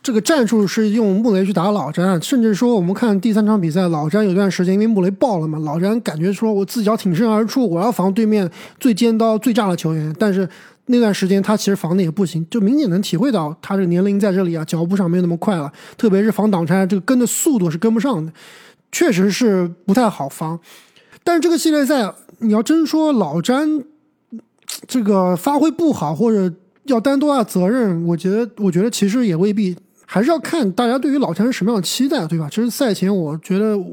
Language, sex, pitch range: Chinese, male, 180-235 Hz